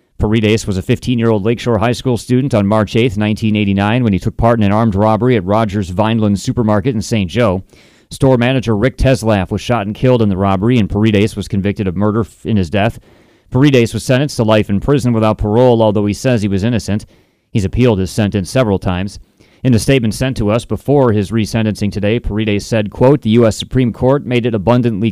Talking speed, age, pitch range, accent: 210 wpm, 30-49, 105-125 Hz, American